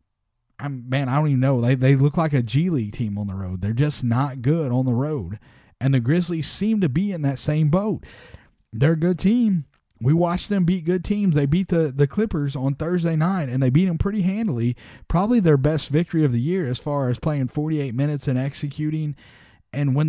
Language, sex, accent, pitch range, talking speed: English, male, American, 125-165 Hz, 225 wpm